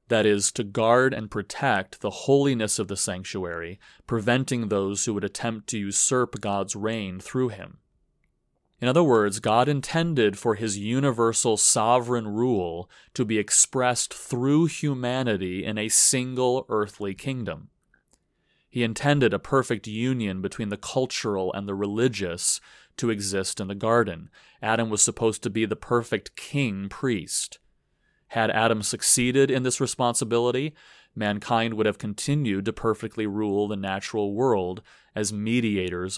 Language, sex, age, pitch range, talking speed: English, male, 30-49, 100-120 Hz, 140 wpm